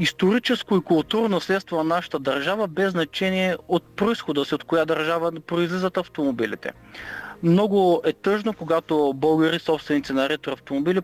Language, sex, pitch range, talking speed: Bulgarian, male, 160-205 Hz, 140 wpm